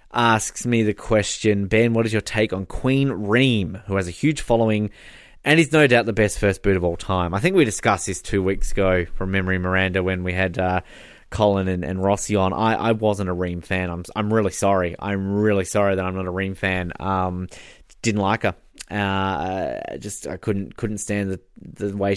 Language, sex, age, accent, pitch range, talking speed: English, male, 20-39, Australian, 95-110 Hz, 215 wpm